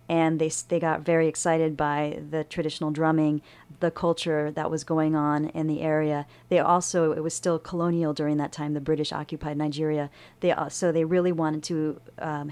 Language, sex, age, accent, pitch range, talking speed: English, female, 40-59, American, 150-165 Hz, 180 wpm